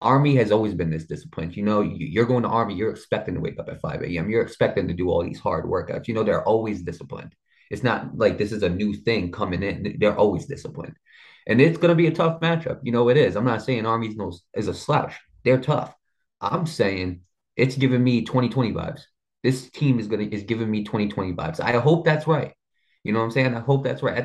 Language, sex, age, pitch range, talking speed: English, male, 20-39, 110-140 Hz, 240 wpm